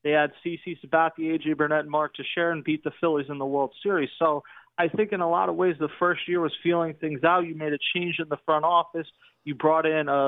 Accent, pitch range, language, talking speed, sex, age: American, 150-185 Hz, English, 255 wpm, male, 30-49